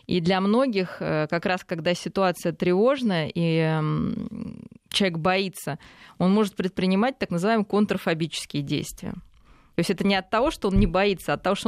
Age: 20-39